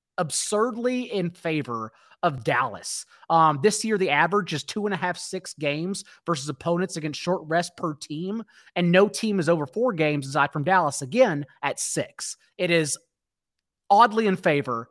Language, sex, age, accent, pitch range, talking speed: English, male, 30-49, American, 150-195 Hz, 170 wpm